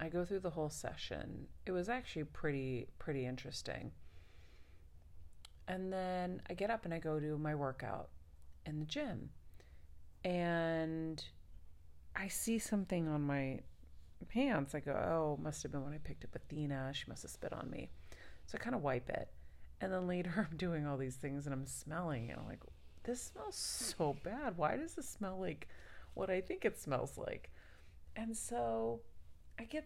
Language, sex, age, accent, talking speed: English, female, 40-59, American, 180 wpm